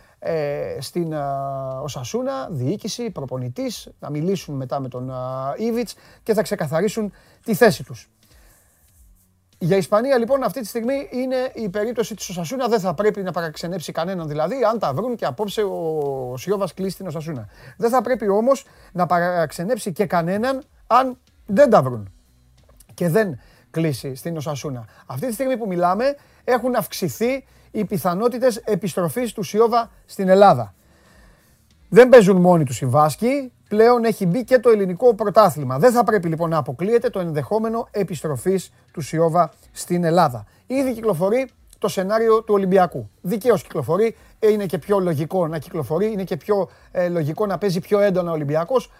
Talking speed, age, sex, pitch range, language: 155 wpm, 30-49, male, 150-220 Hz, Greek